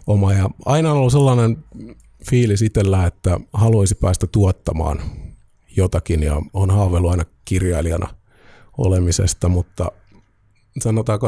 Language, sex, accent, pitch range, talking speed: Finnish, male, native, 90-110 Hz, 110 wpm